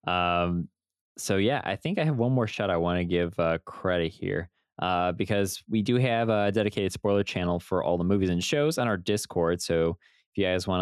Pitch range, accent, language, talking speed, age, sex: 85-125 Hz, American, English, 220 wpm, 20-39, male